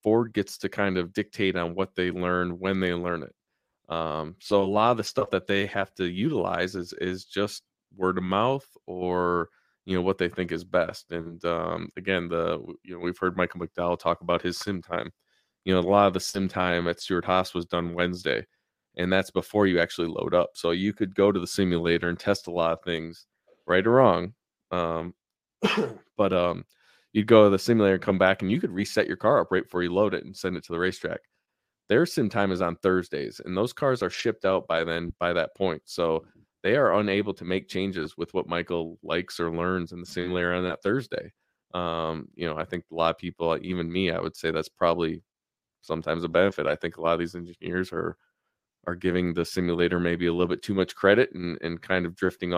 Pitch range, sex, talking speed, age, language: 85-95 Hz, male, 230 wpm, 20-39, English